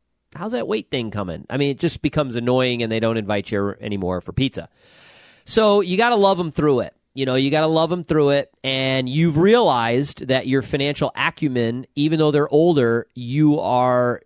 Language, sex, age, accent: English, male, 40-59, American